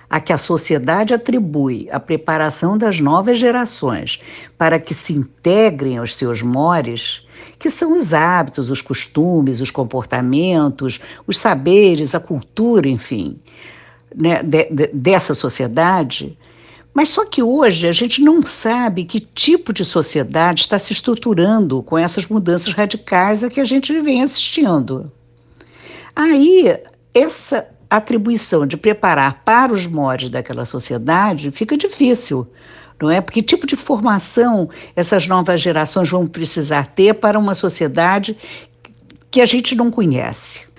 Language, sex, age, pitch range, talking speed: Portuguese, female, 60-79, 145-220 Hz, 135 wpm